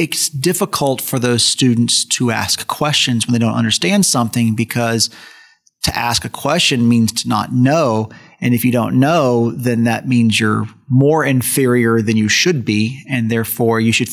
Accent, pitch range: American, 115-135 Hz